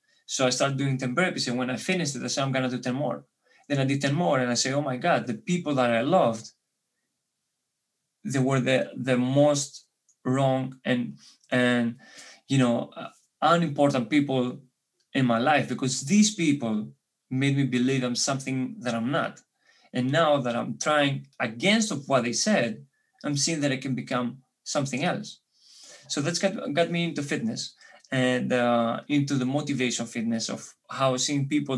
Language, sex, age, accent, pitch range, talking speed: English, male, 20-39, Spanish, 125-145 Hz, 180 wpm